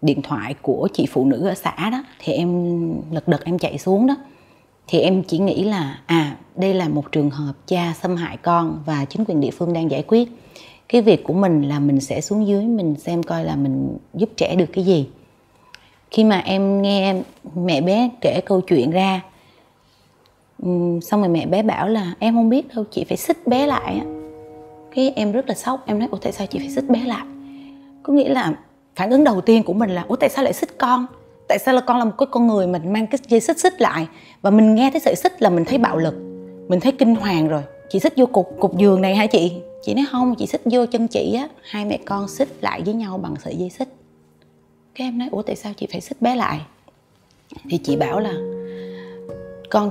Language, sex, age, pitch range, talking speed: Vietnamese, female, 20-39, 155-230 Hz, 235 wpm